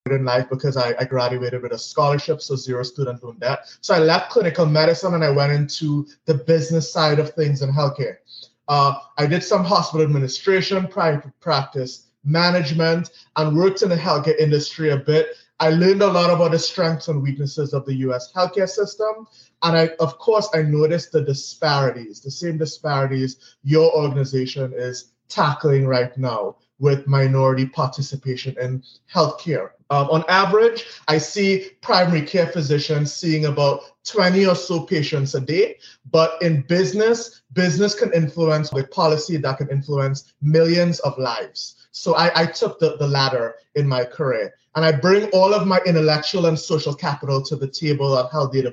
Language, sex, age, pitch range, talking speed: English, male, 20-39, 135-170 Hz, 170 wpm